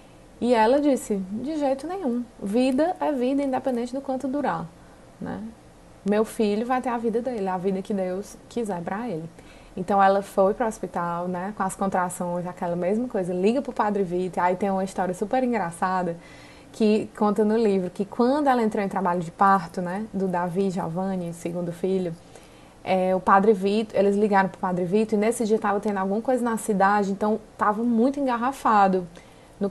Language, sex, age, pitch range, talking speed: Portuguese, female, 20-39, 190-230 Hz, 190 wpm